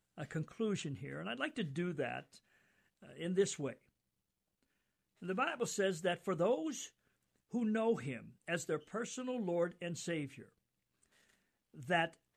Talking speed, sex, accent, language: 135 wpm, male, American, English